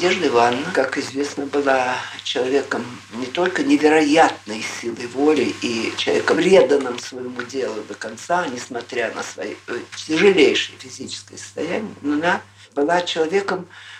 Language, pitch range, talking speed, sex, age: Russian, 140-220 Hz, 120 wpm, male, 50-69